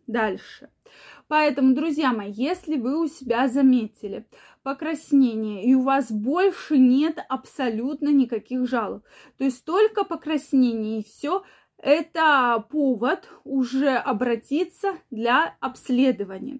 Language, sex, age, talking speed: Russian, female, 20-39, 110 wpm